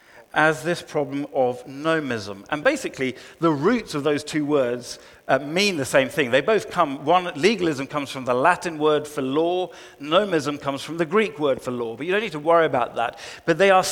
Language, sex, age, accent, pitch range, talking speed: Danish, male, 50-69, British, 150-210 Hz, 210 wpm